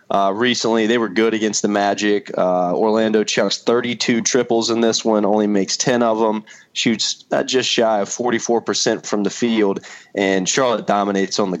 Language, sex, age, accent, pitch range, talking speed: English, male, 20-39, American, 105-125 Hz, 180 wpm